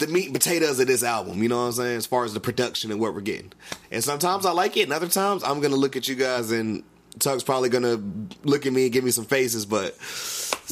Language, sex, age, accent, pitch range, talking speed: English, male, 30-49, American, 115-150 Hz, 285 wpm